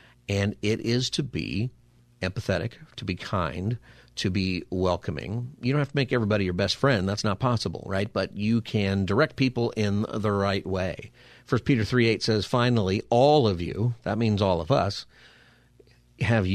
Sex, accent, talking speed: male, American, 175 wpm